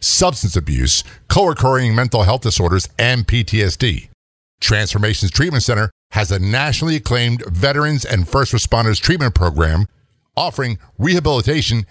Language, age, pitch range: English, 50-69, 95-130 Hz